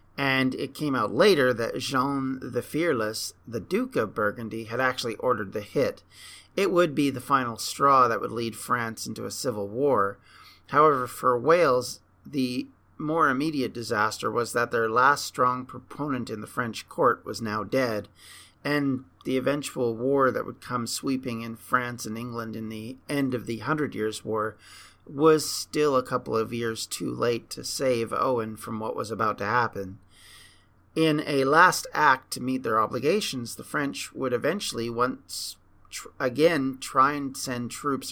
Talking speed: 170 wpm